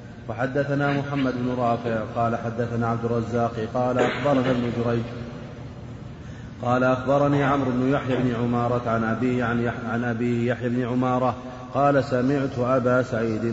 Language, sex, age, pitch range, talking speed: Arabic, male, 30-49, 115-125 Hz, 130 wpm